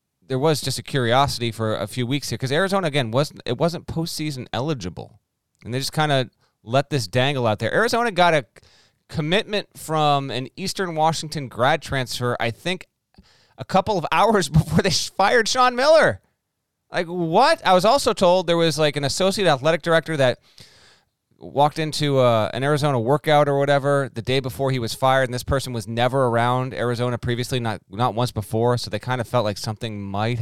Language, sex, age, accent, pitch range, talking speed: English, male, 30-49, American, 120-165 Hz, 190 wpm